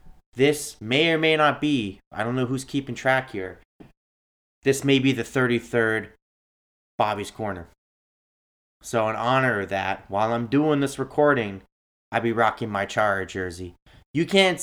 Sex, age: male, 30-49